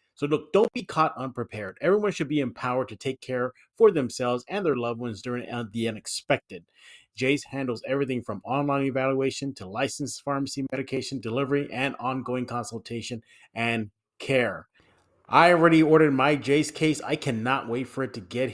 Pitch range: 120-150 Hz